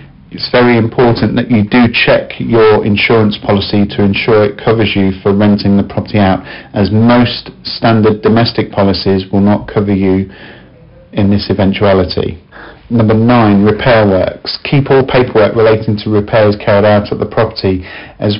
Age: 40-59